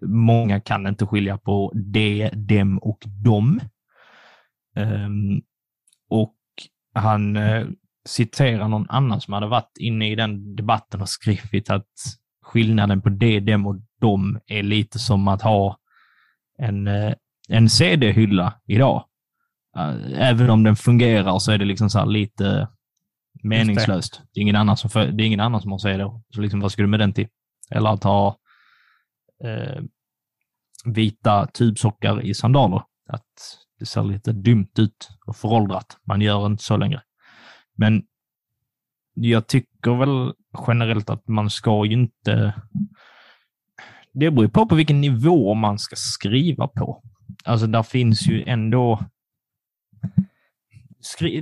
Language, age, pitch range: Swedish, 20-39, 105-120 Hz